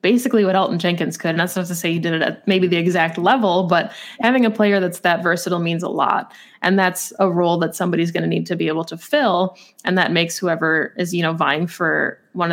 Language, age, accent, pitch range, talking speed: English, 20-39, American, 170-200 Hz, 250 wpm